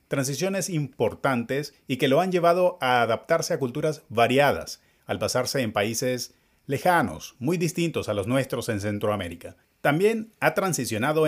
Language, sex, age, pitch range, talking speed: Spanish, male, 30-49, 110-150 Hz, 145 wpm